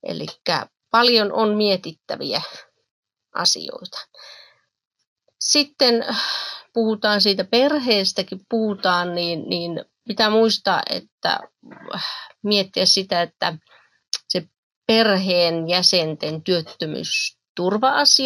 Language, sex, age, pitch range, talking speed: Finnish, female, 30-49, 175-220 Hz, 70 wpm